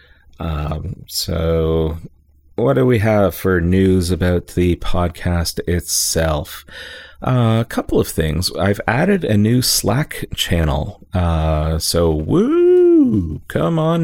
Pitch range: 80-105 Hz